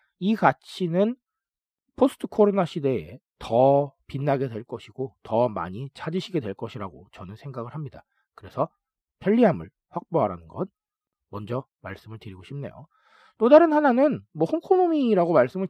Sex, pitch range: male, 140-225 Hz